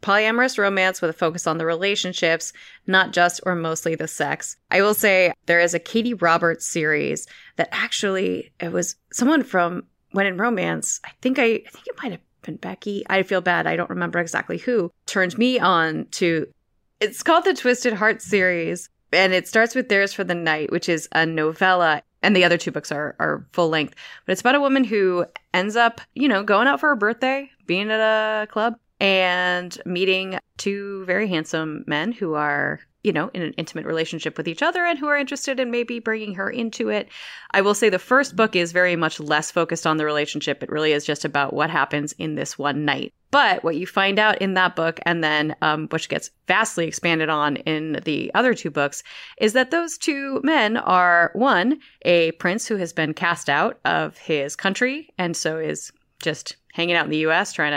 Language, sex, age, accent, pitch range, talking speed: English, female, 20-39, American, 160-220 Hz, 210 wpm